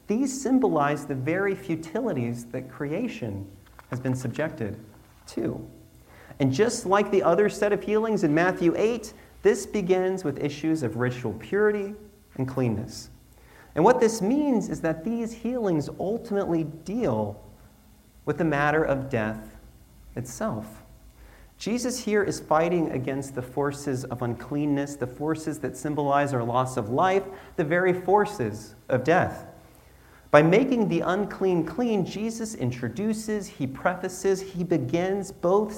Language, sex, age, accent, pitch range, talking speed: English, male, 40-59, American, 125-195 Hz, 135 wpm